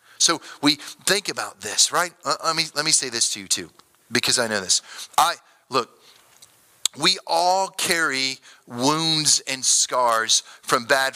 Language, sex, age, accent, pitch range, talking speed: English, male, 30-49, American, 115-150 Hz, 155 wpm